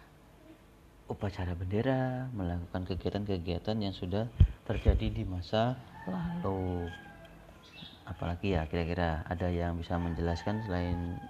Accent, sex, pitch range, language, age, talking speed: native, male, 90-105 Hz, Indonesian, 30-49, 95 wpm